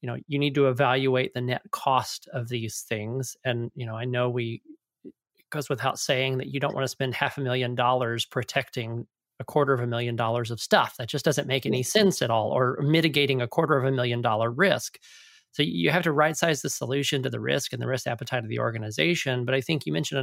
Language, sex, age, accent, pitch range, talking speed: English, male, 30-49, American, 125-150 Hz, 240 wpm